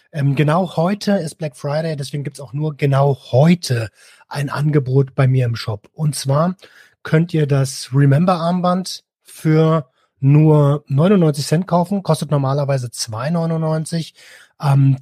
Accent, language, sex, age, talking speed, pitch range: German, German, male, 30-49, 130 wpm, 135-165 Hz